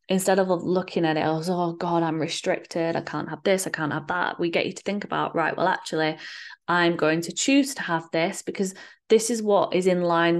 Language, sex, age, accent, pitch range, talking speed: English, female, 20-39, British, 165-190 Hz, 235 wpm